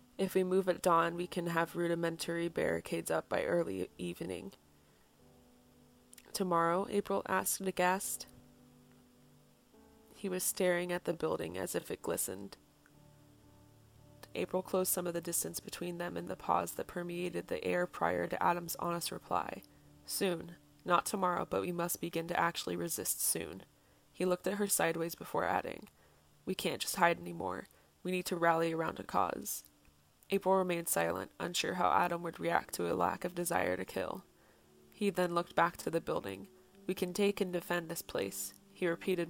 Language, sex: English, female